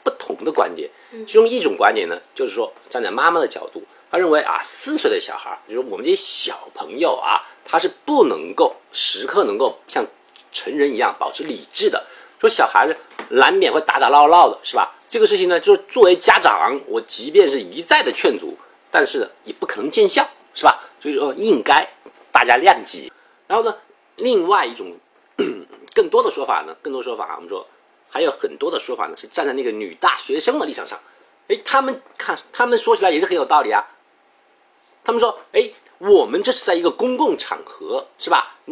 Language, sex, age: Chinese, male, 50-69